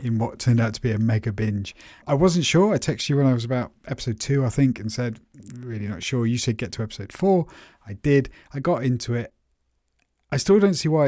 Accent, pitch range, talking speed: British, 110-130 Hz, 245 wpm